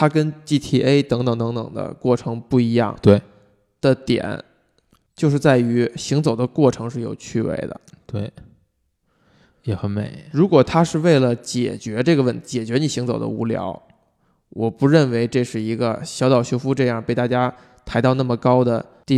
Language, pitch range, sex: Chinese, 115-135 Hz, male